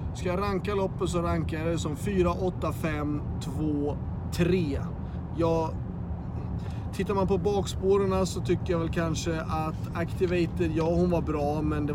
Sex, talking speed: male, 160 wpm